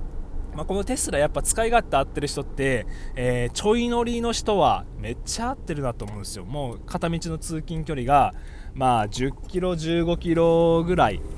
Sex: male